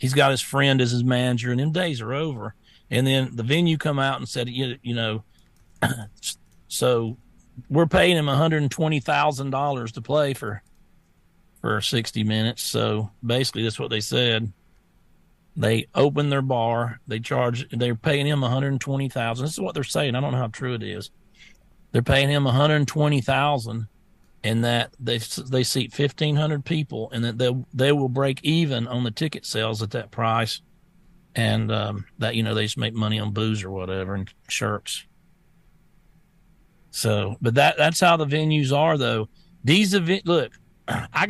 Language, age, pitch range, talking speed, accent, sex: English, 40-59, 115-155 Hz, 185 wpm, American, male